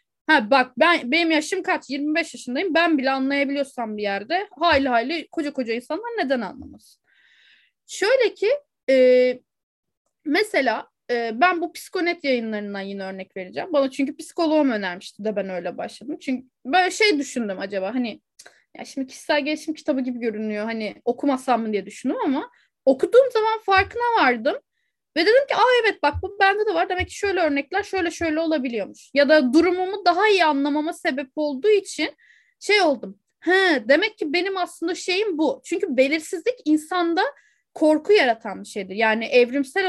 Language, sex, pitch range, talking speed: Turkish, female, 255-355 Hz, 160 wpm